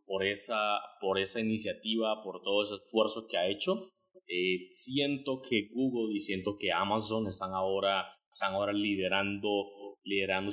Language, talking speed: Spanish, 150 wpm